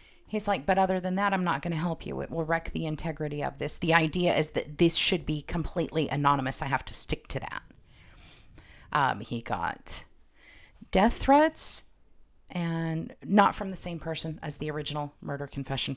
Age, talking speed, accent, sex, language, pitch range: 40-59, 190 wpm, American, female, English, 150-205 Hz